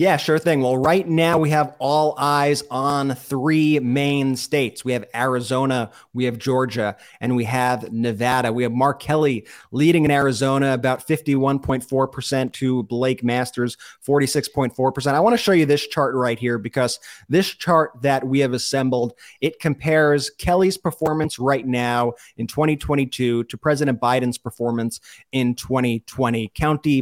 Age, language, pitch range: 30-49, English, 125-150 Hz